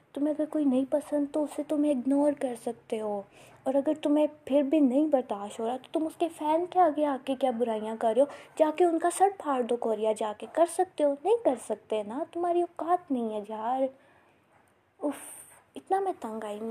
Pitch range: 220-295 Hz